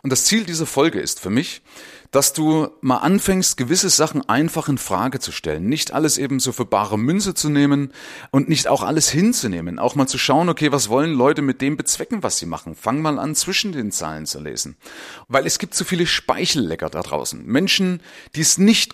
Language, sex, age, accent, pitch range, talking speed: German, male, 30-49, German, 120-170 Hz, 215 wpm